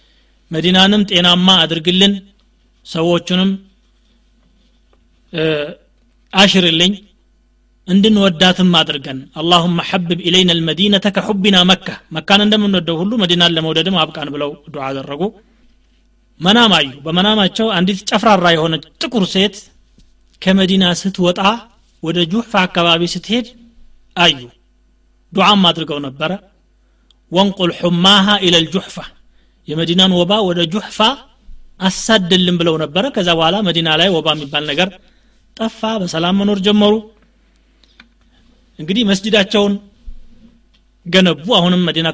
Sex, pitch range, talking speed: male, 165-205 Hz, 90 wpm